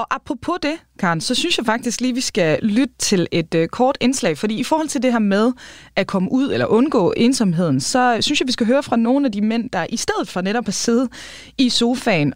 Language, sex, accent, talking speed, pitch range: Danish, female, native, 245 wpm, 200-265 Hz